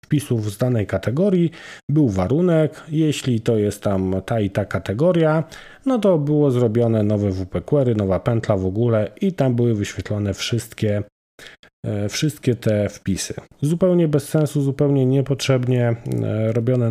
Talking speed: 135 wpm